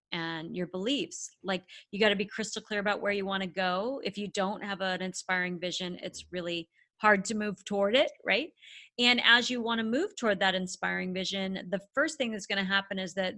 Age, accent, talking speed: 30-49, American, 225 wpm